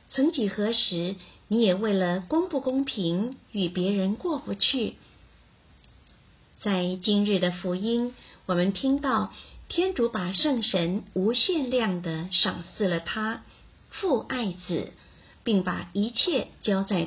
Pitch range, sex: 180-240 Hz, female